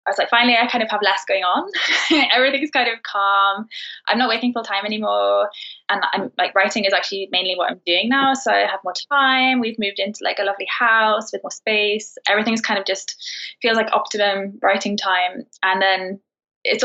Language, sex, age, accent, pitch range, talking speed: English, female, 10-29, British, 190-235 Hz, 210 wpm